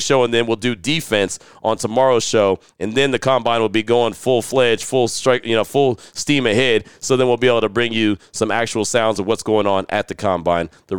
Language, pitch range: English, 110-145 Hz